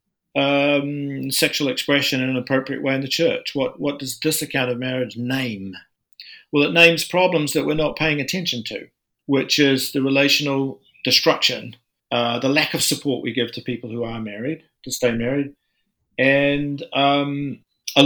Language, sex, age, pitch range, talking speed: English, male, 50-69, 125-155 Hz, 170 wpm